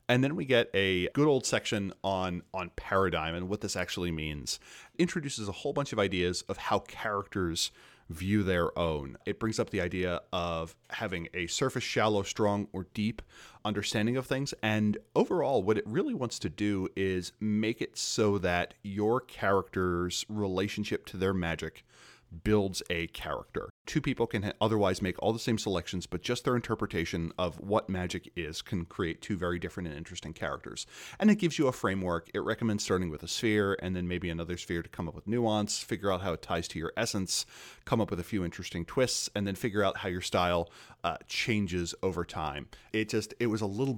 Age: 30-49